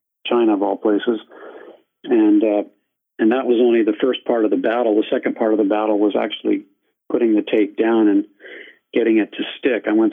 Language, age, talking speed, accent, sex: English, 50-69, 205 wpm, American, male